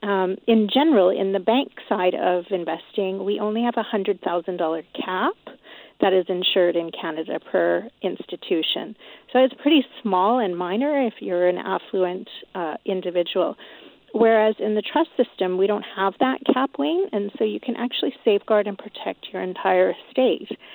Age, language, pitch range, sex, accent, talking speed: 40-59, English, 185-235 Hz, female, American, 160 wpm